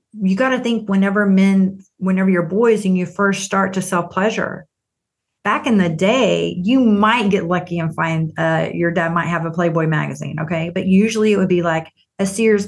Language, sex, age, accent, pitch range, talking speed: English, female, 40-59, American, 165-195 Hz, 205 wpm